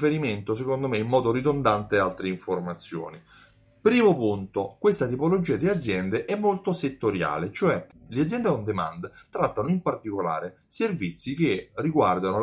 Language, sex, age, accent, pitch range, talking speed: Italian, male, 30-49, native, 95-155 Hz, 130 wpm